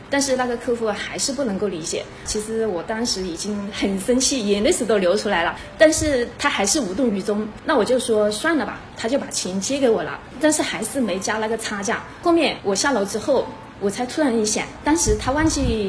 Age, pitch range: 20-39, 210-275 Hz